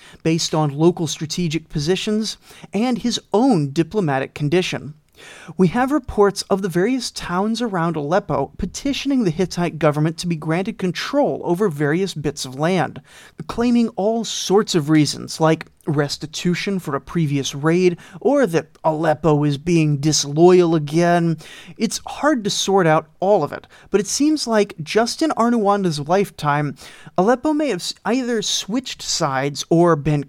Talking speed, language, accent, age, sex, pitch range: 145 wpm, English, American, 30-49, male, 155-210 Hz